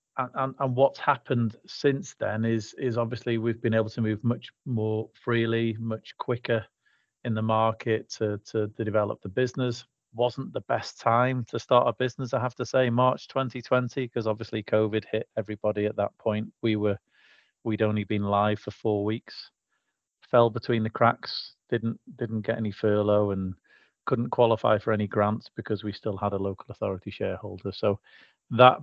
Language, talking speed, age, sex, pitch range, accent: English, 175 wpm, 40-59, male, 105-125 Hz, British